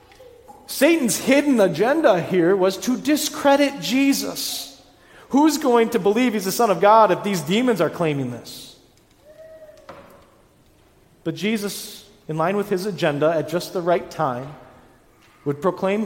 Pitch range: 150-230 Hz